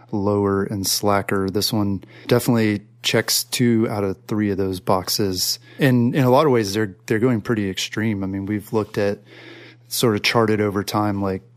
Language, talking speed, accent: English, 185 wpm, American